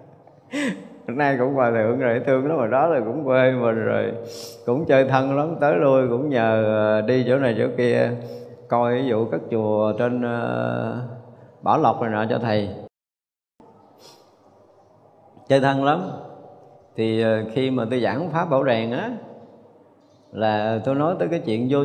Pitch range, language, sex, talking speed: 120-165 Hz, Vietnamese, male, 160 wpm